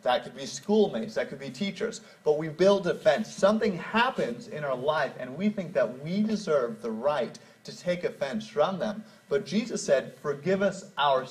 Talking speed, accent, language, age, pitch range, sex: 195 wpm, American, English, 30-49, 160-215 Hz, male